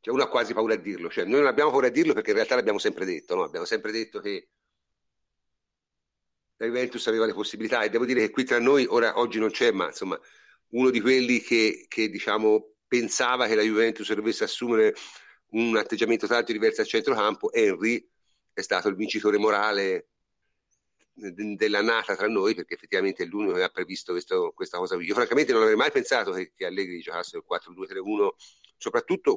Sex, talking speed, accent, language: male, 195 wpm, native, Italian